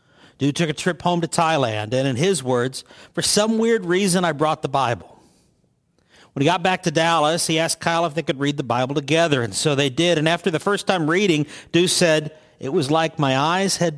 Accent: American